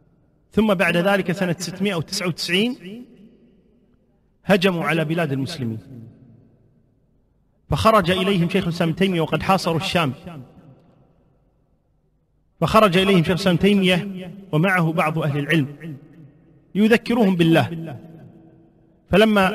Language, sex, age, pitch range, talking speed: Arabic, male, 40-59, 165-210 Hz, 90 wpm